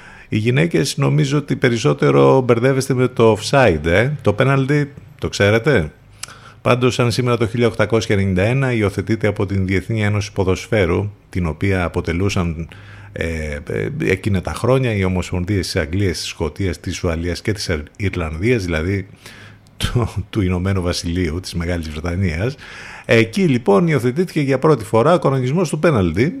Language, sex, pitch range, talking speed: Greek, male, 90-125 Hz, 140 wpm